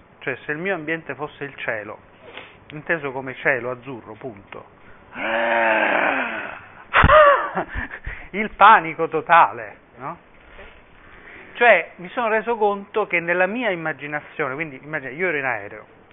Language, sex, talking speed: Italian, male, 120 wpm